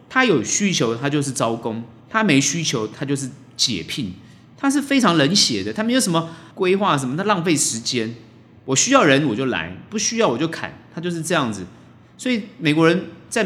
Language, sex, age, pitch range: Chinese, male, 30-49, 120-190 Hz